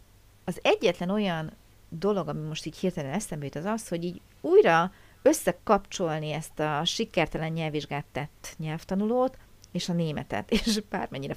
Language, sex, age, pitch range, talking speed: Hungarian, female, 40-59, 165-225 Hz, 145 wpm